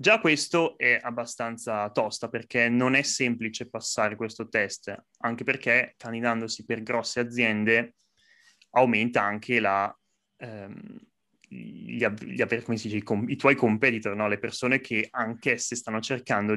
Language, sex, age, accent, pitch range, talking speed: Italian, male, 20-39, native, 115-135 Hz, 130 wpm